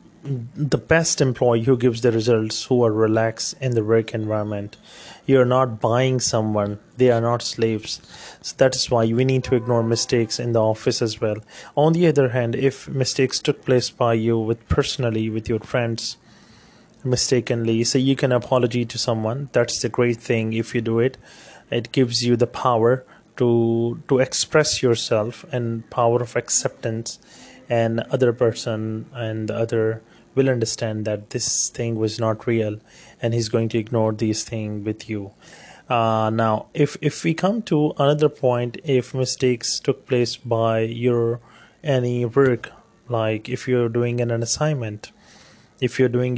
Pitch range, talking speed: 115-130 Hz, 170 wpm